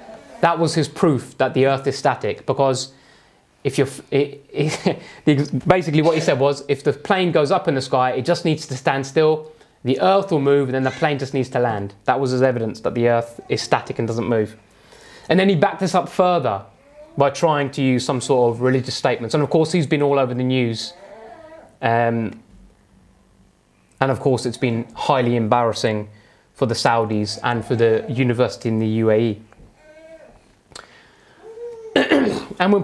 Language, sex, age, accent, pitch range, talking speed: English, male, 20-39, British, 125-170 Hz, 185 wpm